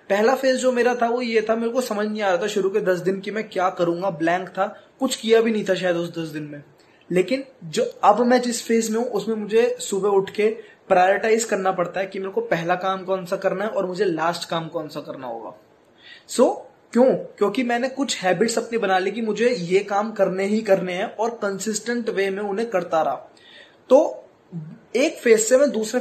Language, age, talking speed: English, 20-39, 160 wpm